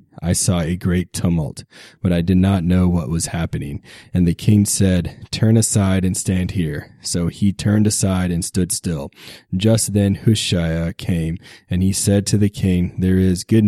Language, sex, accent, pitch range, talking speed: English, male, American, 85-100 Hz, 185 wpm